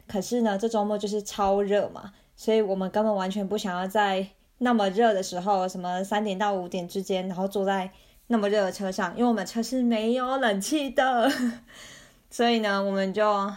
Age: 20-39